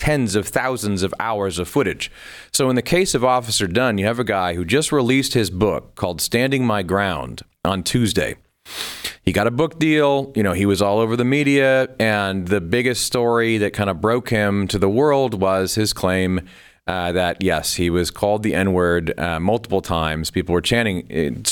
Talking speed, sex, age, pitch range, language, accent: 200 wpm, male, 40-59, 95-125 Hz, English, American